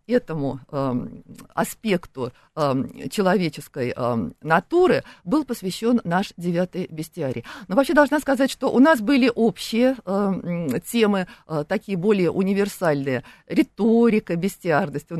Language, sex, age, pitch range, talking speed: Russian, female, 50-69, 160-250 Hz, 120 wpm